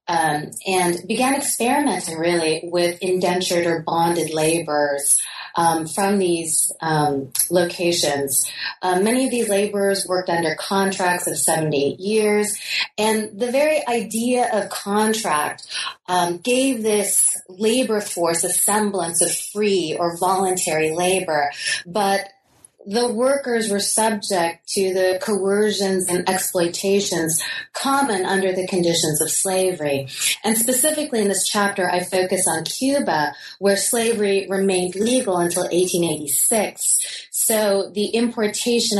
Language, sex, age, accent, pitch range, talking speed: English, female, 30-49, American, 175-210 Hz, 120 wpm